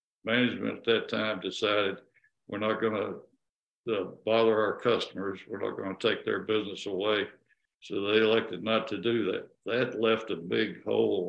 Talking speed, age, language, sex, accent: 170 wpm, 60-79, English, male, American